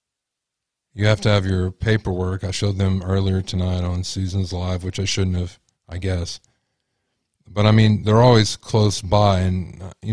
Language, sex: English, male